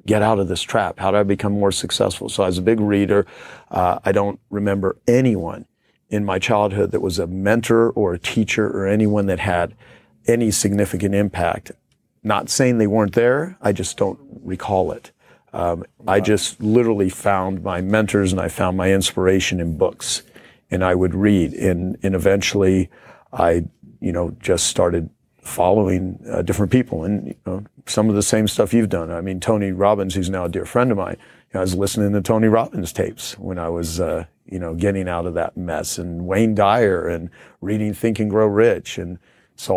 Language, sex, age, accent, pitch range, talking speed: English, male, 40-59, American, 90-105 Hz, 200 wpm